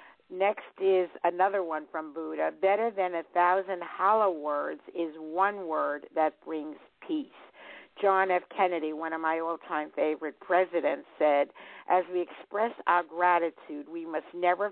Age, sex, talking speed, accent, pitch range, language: 50-69, female, 145 wpm, American, 160-195 Hz, English